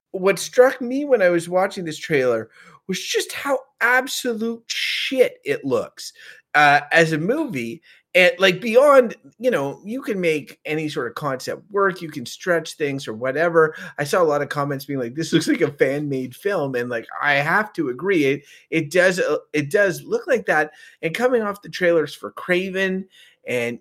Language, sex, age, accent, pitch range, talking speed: English, male, 30-49, American, 140-200 Hz, 195 wpm